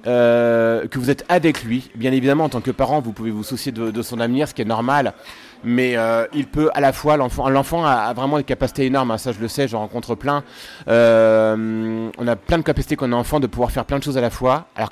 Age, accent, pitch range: 30-49, French, 120-145 Hz